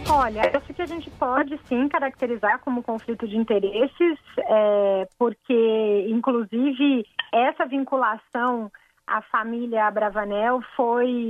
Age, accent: 30-49, Brazilian